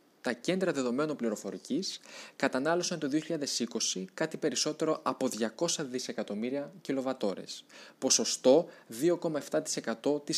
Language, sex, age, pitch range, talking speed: Greek, male, 20-39, 125-165 Hz, 90 wpm